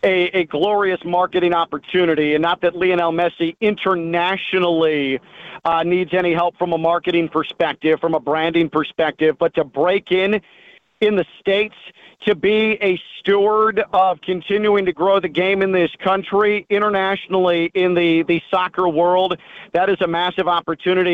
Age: 40-59